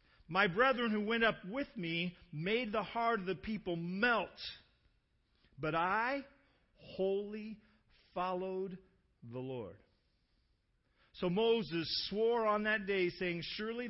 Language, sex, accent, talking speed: English, male, American, 120 wpm